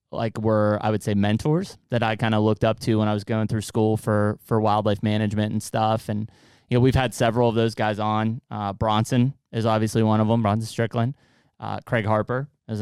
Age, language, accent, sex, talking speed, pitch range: 20-39, English, American, male, 225 wpm, 110-120 Hz